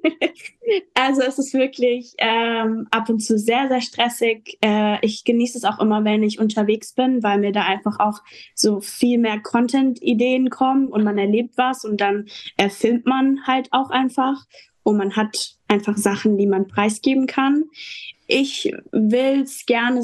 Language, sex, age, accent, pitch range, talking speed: German, female, 10-29, German, 215-270 Hz, 170 wpm